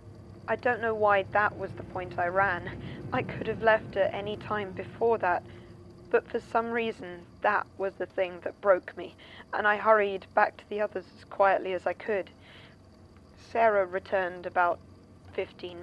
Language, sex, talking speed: English, female, 175 wpm